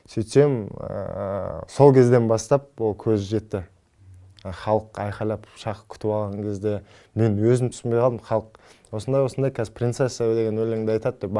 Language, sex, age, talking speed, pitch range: Russian, male, 20-39, 110 wpm, 105-130 Hz